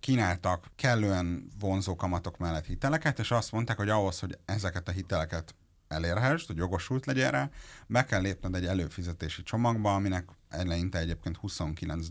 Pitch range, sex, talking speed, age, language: 85-105 Hz, male, 150 wpm, 30-49, Hungarian